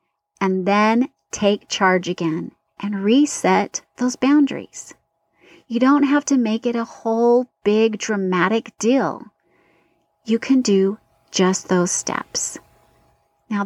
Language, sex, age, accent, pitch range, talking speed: English, female, 30-49, American, 195-255 Hz, 120 wpm